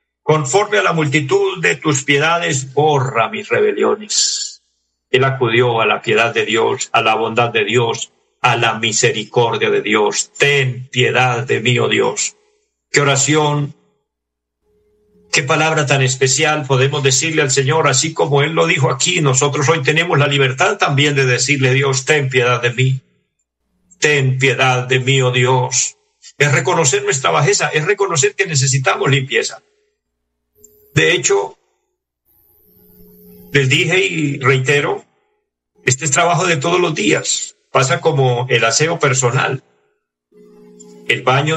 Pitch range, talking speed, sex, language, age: 130-165 Hz, 140 wpm, male, Spanish, 50-69